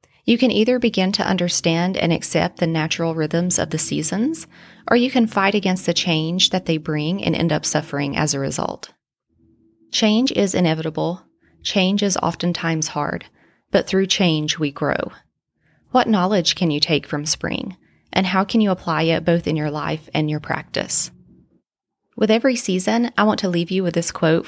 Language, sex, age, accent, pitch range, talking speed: English, female, 30-49, American, 155-195 Hz, 180 wpm